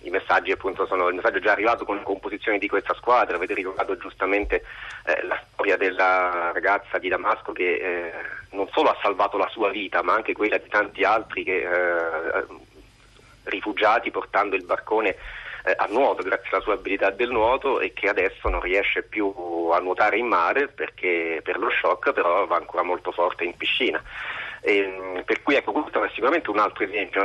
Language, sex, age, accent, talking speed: Italian, male, 30-49, native, 185 wpm